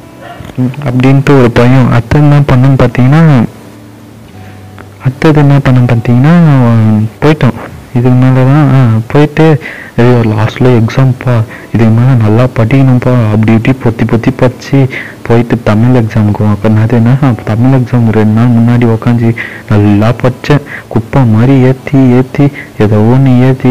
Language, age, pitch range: Tamil, 30-49, 110-130 Hz